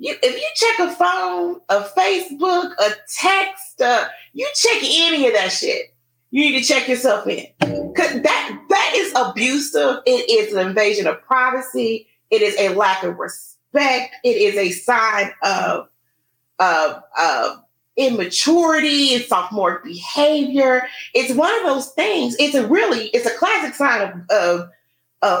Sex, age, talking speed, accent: female, 30-49, 150 wpm, American